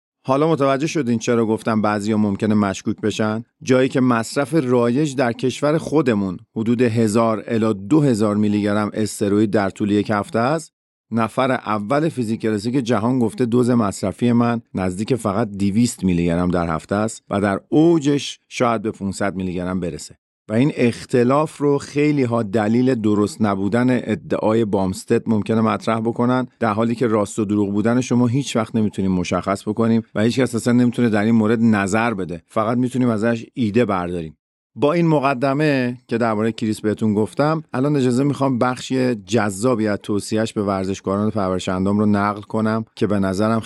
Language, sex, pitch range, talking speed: Persian, male, 105-125 Hz, 160 wpm